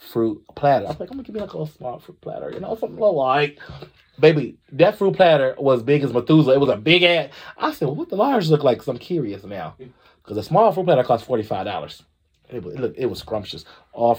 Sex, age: male, 30-49